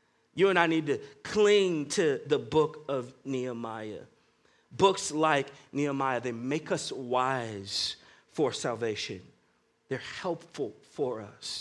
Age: 40-59